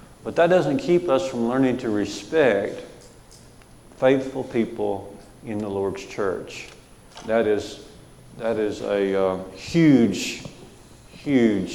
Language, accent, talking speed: English, American, 115 wpm